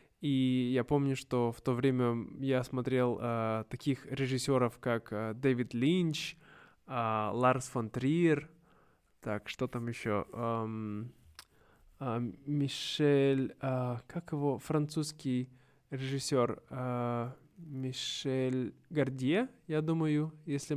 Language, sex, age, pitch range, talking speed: Russian, male, 20-39, 120-145 Hz, 105 wpm